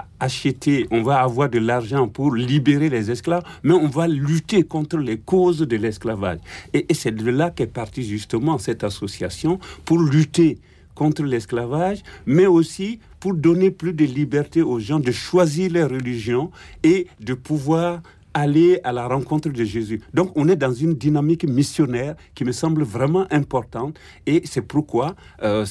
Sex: male